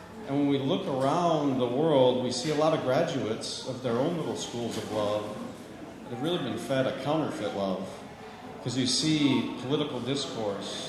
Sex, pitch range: male, 120-150 Hz